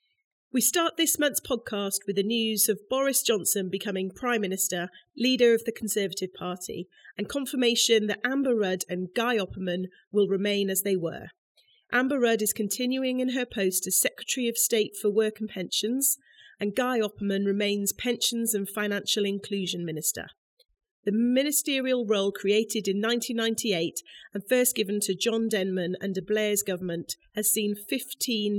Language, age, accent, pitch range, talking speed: English, 40-59, British, 185-235 Hz, 155 wpm